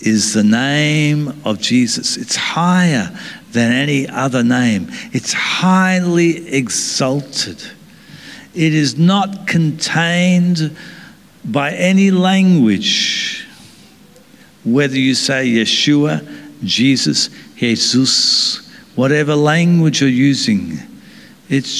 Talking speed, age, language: 90 wpm, 60-79, English